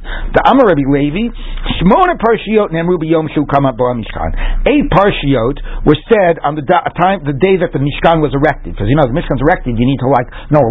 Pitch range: 130-160 Hz